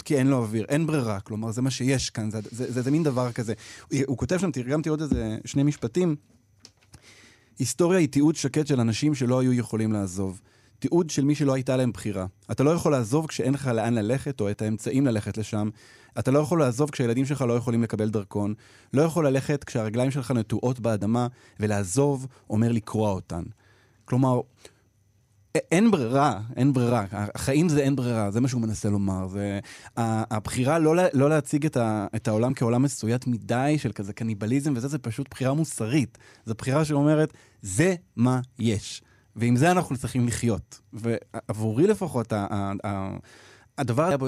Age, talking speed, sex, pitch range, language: 20-39, 175 wpm, male, 105-135 Hz, Hebrew